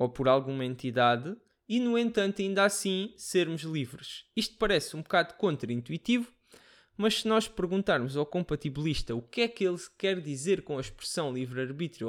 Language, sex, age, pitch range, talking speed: Portuguese, male, 20-39, 140-195 Hz, 165 wpm